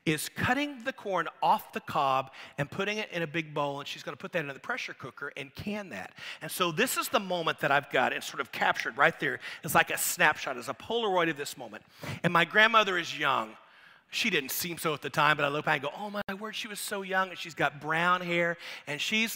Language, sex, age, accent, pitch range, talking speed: English, male, 40-59, American, 145-185 Hz, 255 wpm